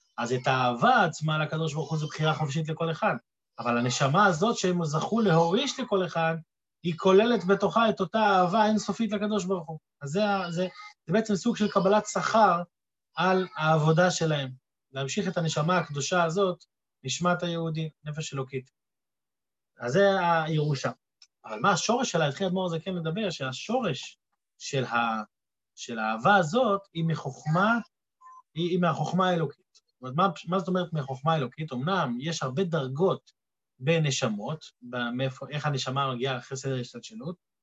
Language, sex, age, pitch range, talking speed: Hebrew, male, 30-49, 155-205 Hz, 155 wpm